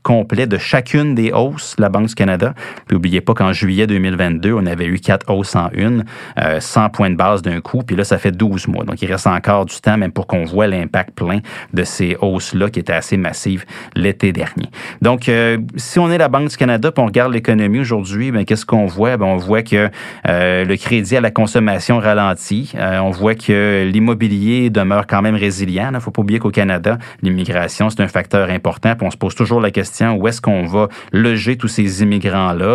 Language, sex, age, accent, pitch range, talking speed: French, male, 30-49, Canadian, 95-115 Hz, 220 wpm